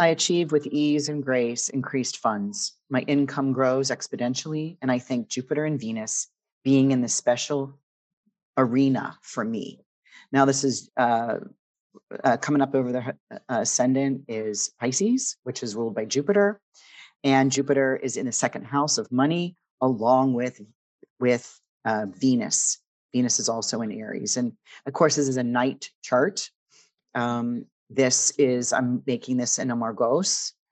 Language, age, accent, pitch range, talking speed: English, 40-59, American, 120-145 Hz, 150 wpm